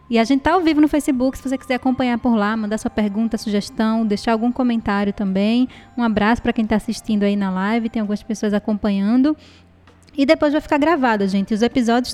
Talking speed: 215 wpm